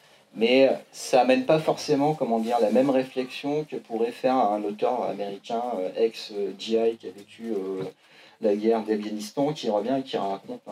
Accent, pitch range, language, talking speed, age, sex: French, 110-150 Hz, French, 160 wpm, 40-59, male